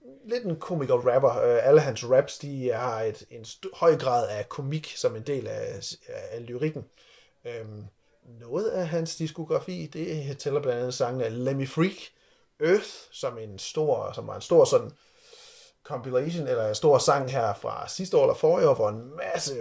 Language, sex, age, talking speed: Danish, male, 30-49, 185 wpm